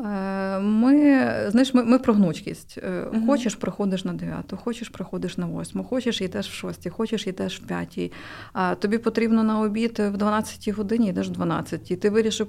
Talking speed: 165 wpm